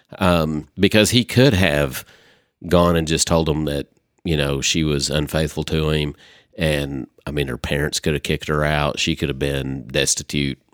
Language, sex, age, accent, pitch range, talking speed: English, male, 40-59, American, 75-95 Hz, 185 wpm